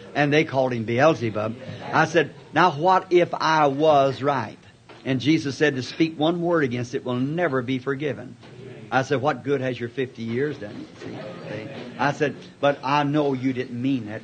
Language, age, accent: English, 50-69, American